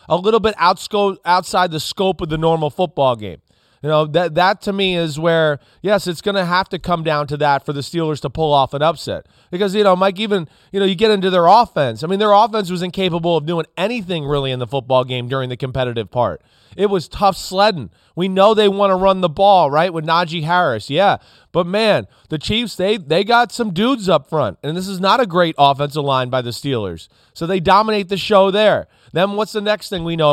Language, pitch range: English, 150-200 Hz